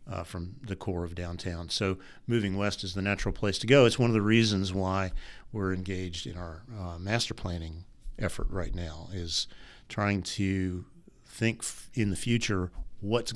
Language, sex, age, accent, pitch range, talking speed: English, male, 50-69, American, 90-110 Hz, 180 wpm